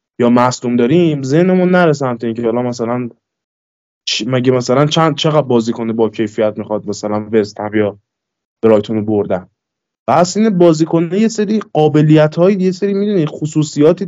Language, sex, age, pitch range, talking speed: Persian, male, 20-39, 115-160 Hz, 130 wpm